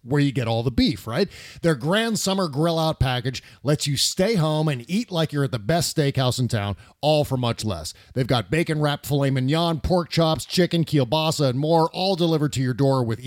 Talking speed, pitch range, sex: 215 wpm, 130-165 Hz, male